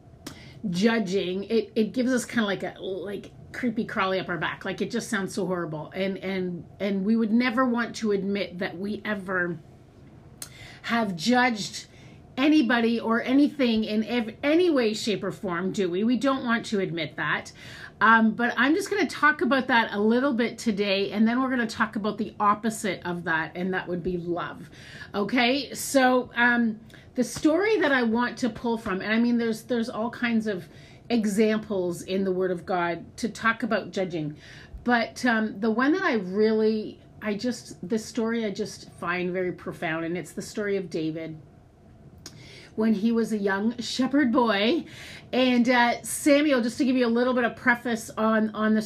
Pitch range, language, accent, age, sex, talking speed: 190-240 Hz, English, American, 30-49, female, 190 wpm